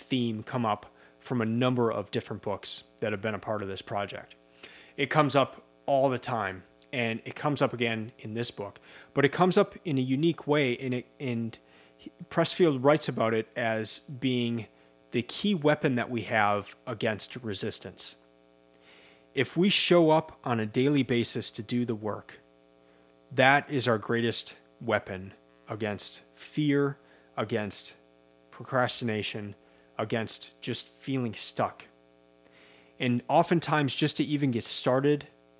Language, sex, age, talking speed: English, male, 30-49, 150 wpm